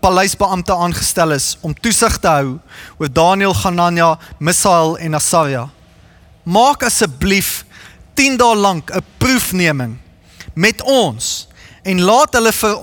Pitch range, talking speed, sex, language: 145-230 Hz, 115 wpm, male, English